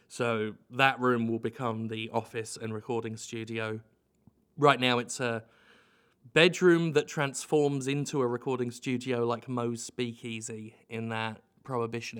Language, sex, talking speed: English, male, 135 wpm